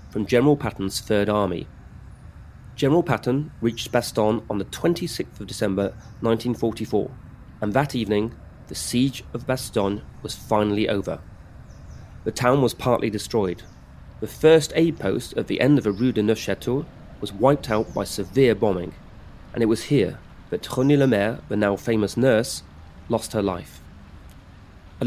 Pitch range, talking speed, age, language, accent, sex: 100-130 Hz, 150 wpm, 30-49, English, British, male